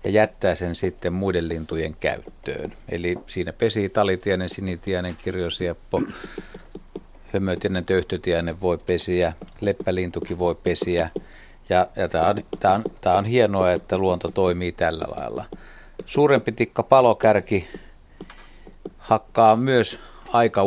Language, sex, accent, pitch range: Finnish, male, native, 90-110 Hz